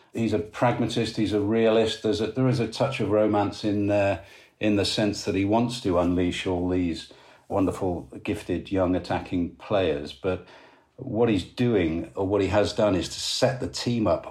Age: 50-69